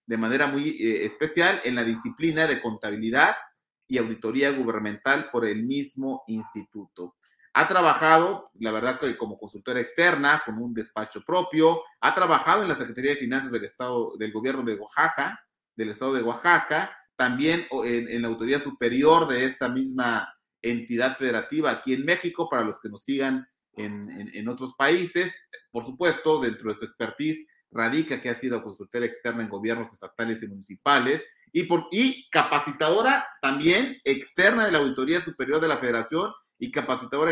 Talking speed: 160 wpm